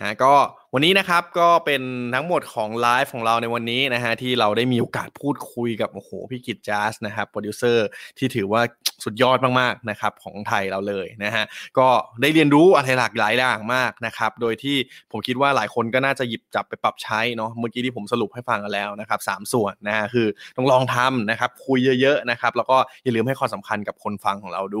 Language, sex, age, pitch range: Thai, male, 20-39, 110-130 Hz